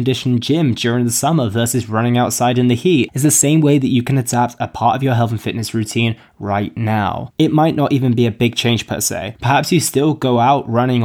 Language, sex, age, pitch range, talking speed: English, male, 20-39, 115-140 Hz, 245 wpm